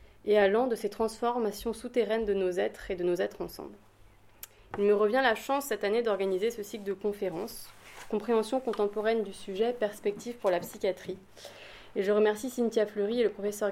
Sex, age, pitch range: female, 20-39, 195-230 Hz